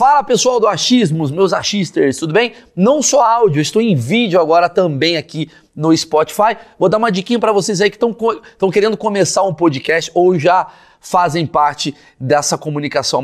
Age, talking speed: 30-49, 170 wpm